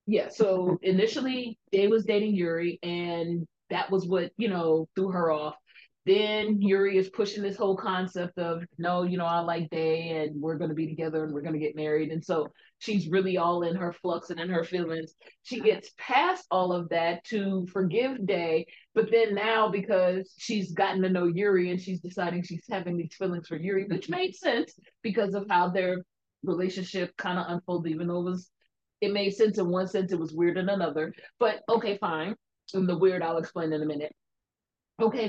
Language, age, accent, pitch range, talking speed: English, 30-49, American, 175-215 Hz, 200 wpm